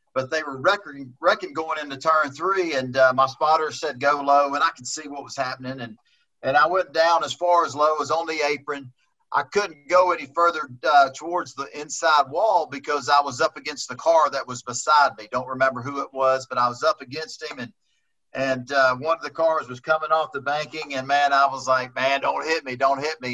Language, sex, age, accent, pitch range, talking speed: English, male, 40-59, American, 130-160 Hz, 235 wpm